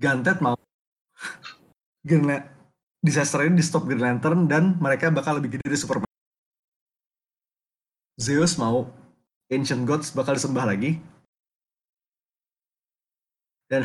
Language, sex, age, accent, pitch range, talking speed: Indonesian, male, 20-39, native, 125-160 Hz, 105 wpm